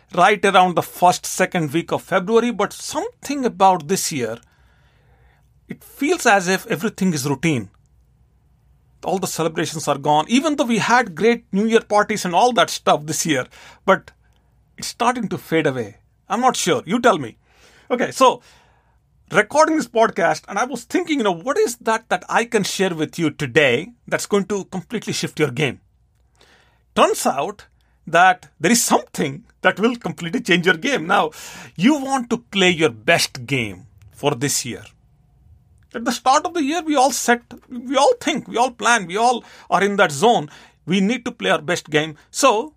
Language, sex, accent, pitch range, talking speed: English, male, Indian, 155-235 Hz, 185 wpm